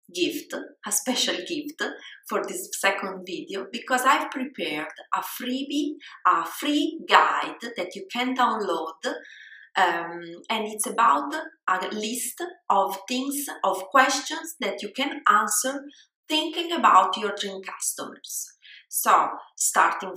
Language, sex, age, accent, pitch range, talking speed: English, female, 30-49, Italian, 195-290 Hz, 120 wpm